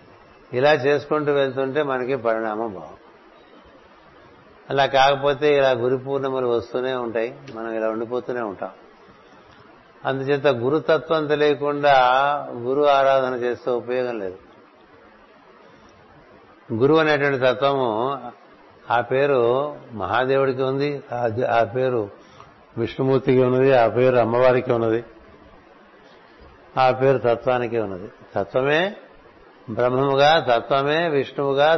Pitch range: 120-140 Hz